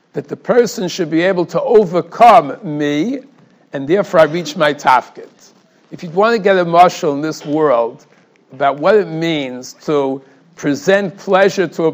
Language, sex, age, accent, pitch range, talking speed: English, male, 60-79, American, 145-185 Hz, 170 wpm